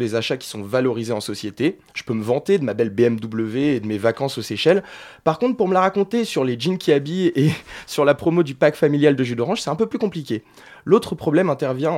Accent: French